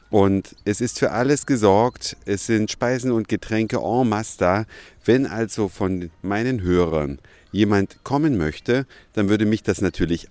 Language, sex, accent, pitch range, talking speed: German, male, German, 95-115 Hz, 150 wpm